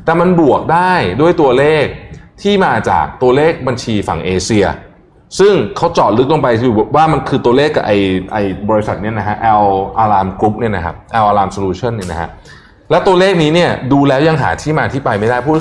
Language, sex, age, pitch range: Thai, male, 20-39, 95-140 Hz